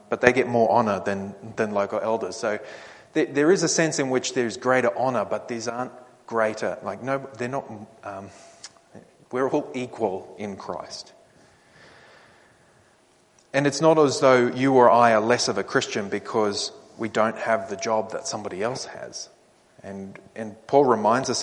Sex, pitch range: male, 110-135 Hz